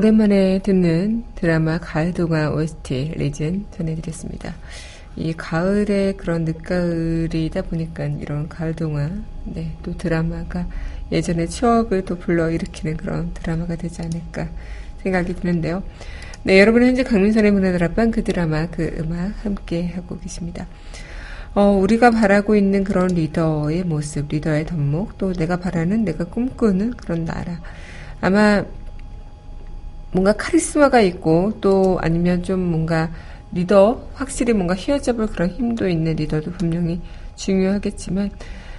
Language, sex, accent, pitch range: Korean, female, native, 165-200 Hz